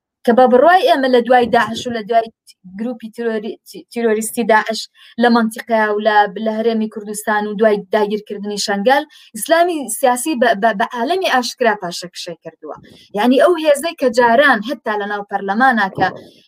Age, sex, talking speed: 20-39, female, 125 wpm